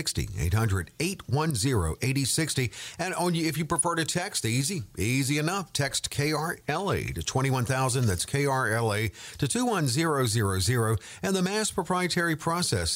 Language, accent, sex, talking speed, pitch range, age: English, American, male, 110 wpm, 115-155 Hz, 50-69